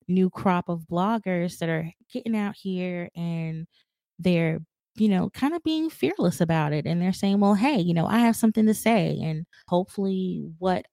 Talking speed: 185 wpm